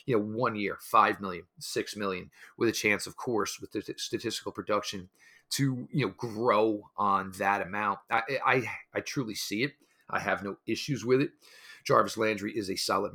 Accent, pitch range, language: American, 100-110 Hz, English